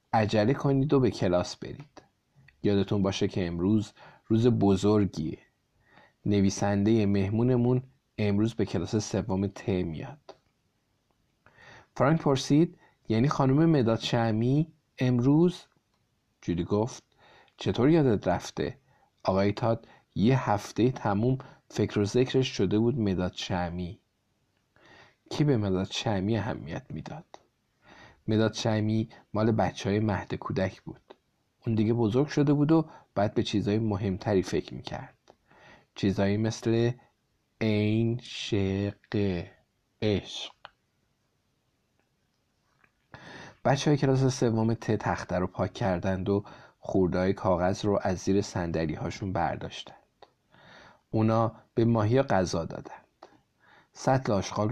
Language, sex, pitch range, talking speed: Persian, male, 100-125 Hz, 105 wpm